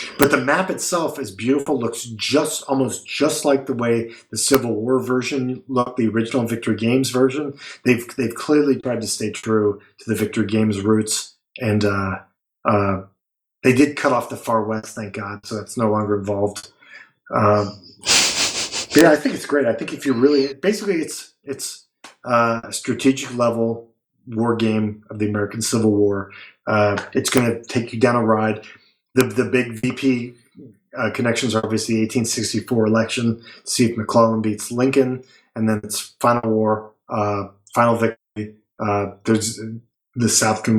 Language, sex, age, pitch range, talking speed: English, male, 30-49, 110-130 Hz, 170 wpm